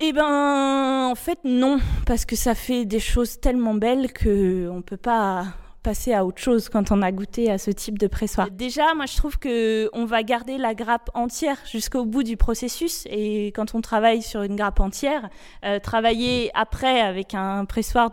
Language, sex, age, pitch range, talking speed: French, female, 20-39, 210-255 Hz, 190 wpm